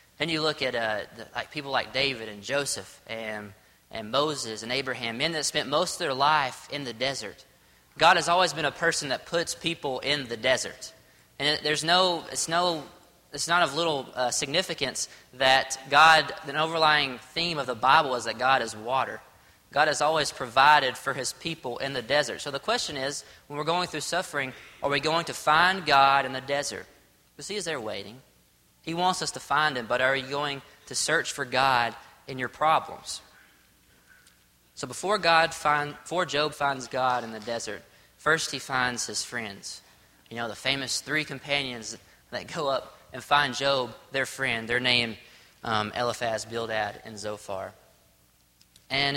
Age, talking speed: 20-39, 185 wpm